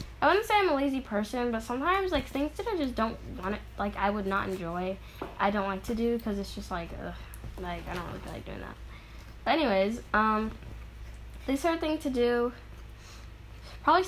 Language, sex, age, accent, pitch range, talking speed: English, female, 10-29, American, 195-275 Hz, 215 wpm